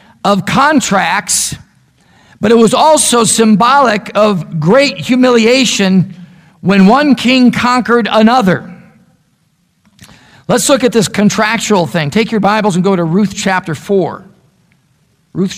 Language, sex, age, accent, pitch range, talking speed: English, male, 50-69, American, 170-220 Hz, 120 wpm